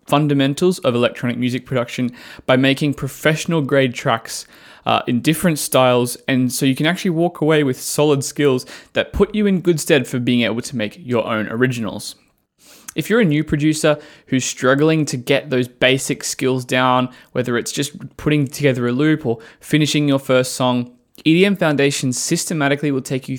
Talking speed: 175 wpm